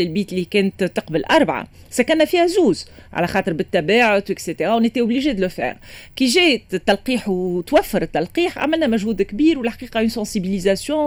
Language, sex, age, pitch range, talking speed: Arabic, female, 40-59, 185-245 Hz, 145 wpm